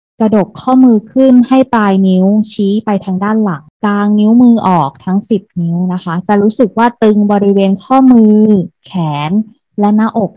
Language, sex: Thai, female